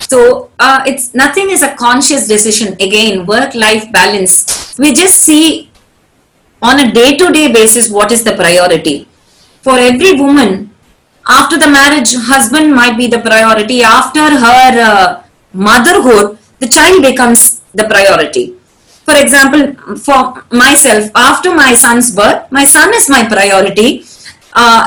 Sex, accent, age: female, Indian, 20-39